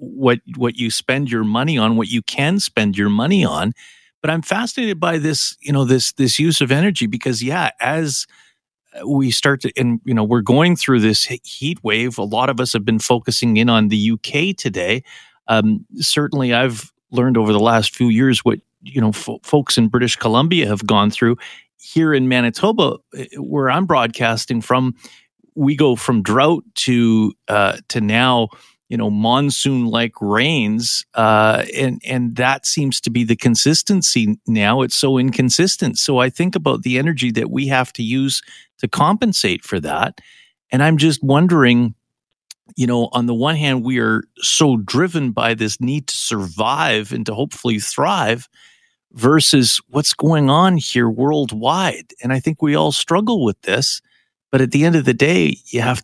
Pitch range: 115-145 Hz